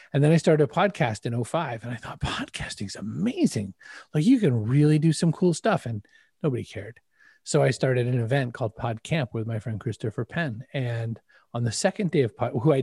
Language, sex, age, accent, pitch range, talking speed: English, male, 30-49, American, 120-150 Hz, 220 wpm